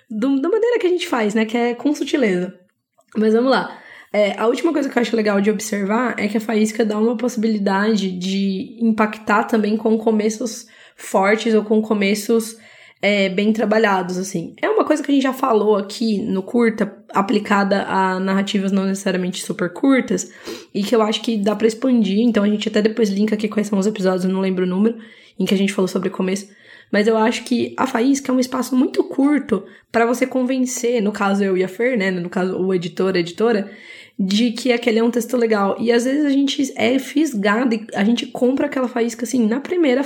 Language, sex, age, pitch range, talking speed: Portuguese, female, 10-29, 200-240 Hz, 210 wpm